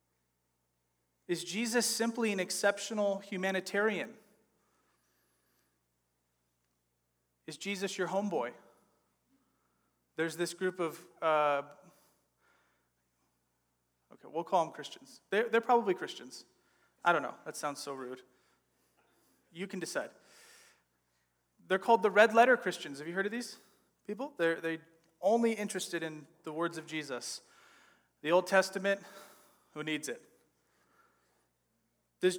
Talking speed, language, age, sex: 115 wpm, English, 30-49, male